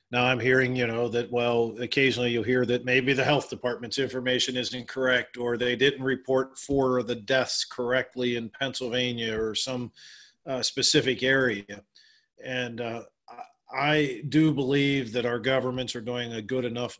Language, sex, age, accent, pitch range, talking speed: English, male, 40-59, American, 115-130 Hz, 165 wpm